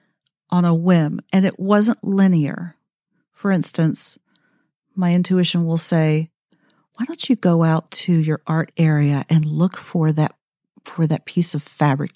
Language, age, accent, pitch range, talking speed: English, 50-69, American, 155-195 Hz, 155 wpm